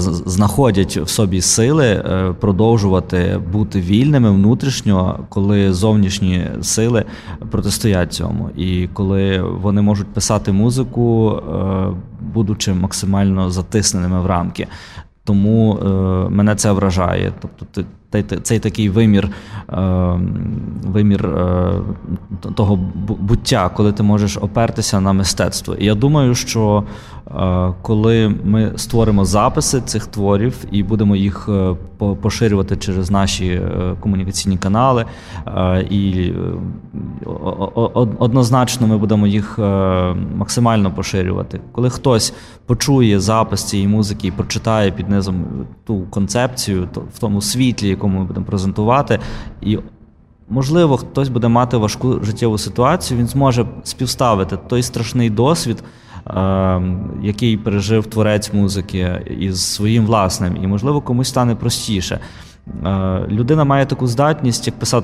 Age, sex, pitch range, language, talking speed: 20-39, male, 95-115 Hz, Ukrainian, 110 wpm